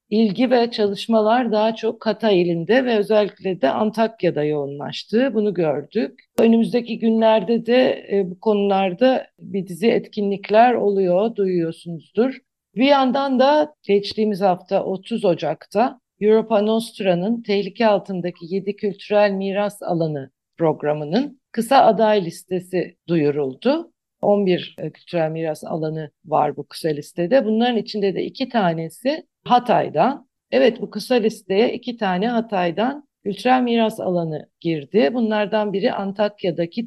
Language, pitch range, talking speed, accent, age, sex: Turkish, 180-225 Hz, 115 wpm, native, 50-69, female